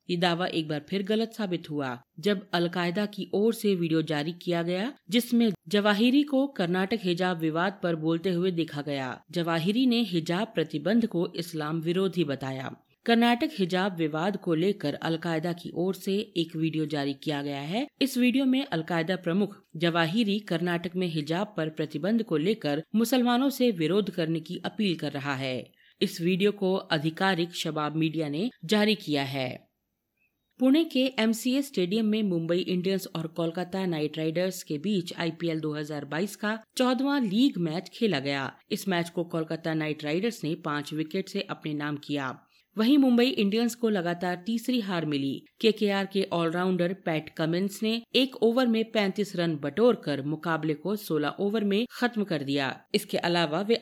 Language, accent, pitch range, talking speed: Hindi, native, 160-215 Hz, 170 wpm